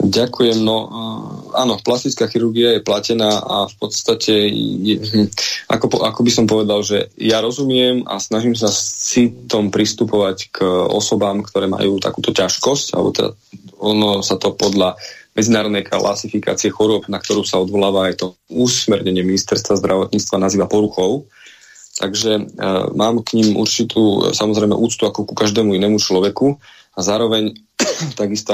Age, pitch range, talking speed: 20-39, 100-110 Hz, 140 wpm